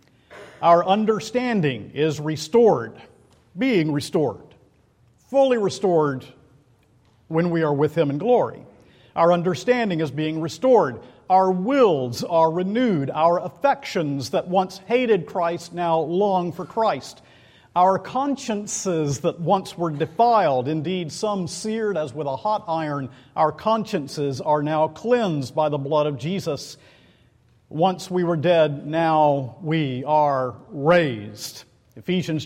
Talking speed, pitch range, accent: 125 wpm, 145-185 Hz, American